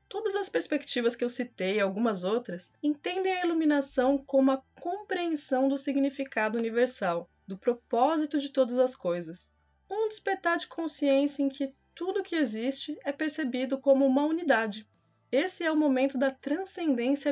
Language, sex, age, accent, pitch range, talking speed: Portuguese, female, 20-39, Brazilian, 235-320 Hz, 150 wpm